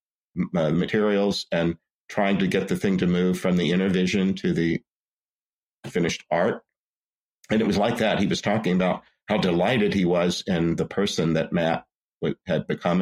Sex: male